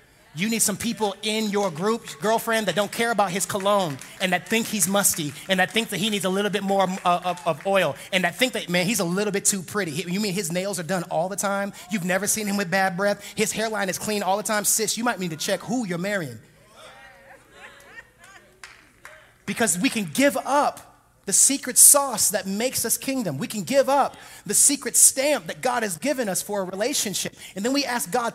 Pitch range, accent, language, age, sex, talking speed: 170-220 Hz, American, English, 30-49, male, 230 wpm